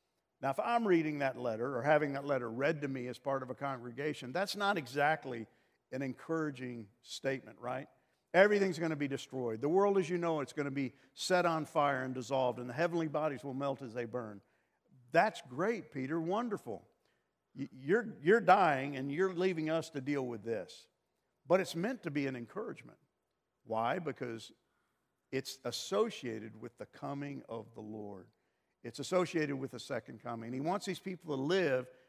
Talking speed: 180 wpm